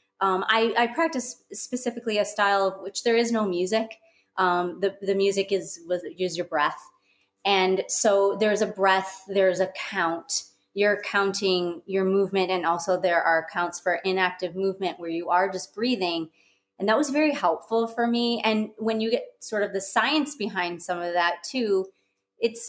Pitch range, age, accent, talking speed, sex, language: 180-220 Hz, 30-49, American, 175 wpm, female, English